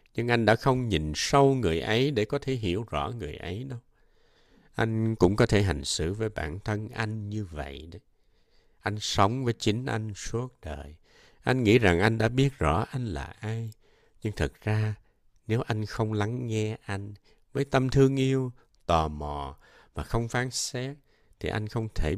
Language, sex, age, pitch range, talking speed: Vietnamese, male, 60-79, 85-120 Hz, 185 wpm